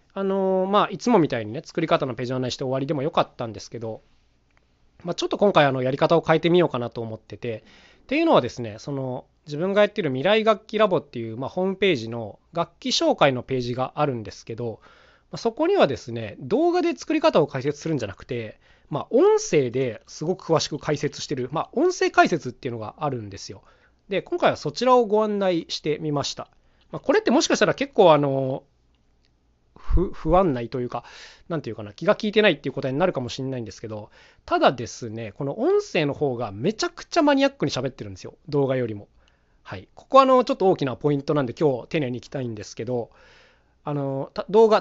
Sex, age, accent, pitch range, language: male, 20-39, native, 120-195 Hz, Japanese